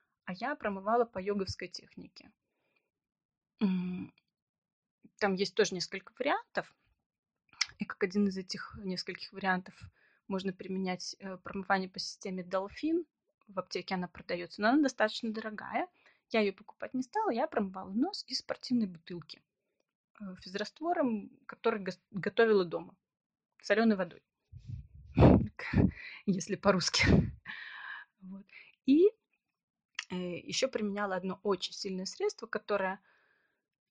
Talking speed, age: 105 wpm, 30-49